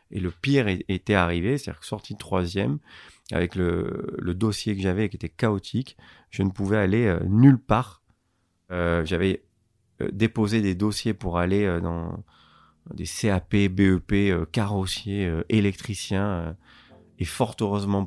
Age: 30-49